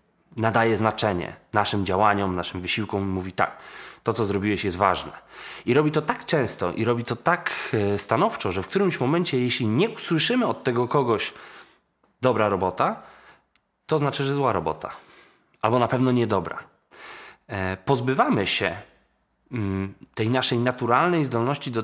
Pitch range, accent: 100-135 Hz, native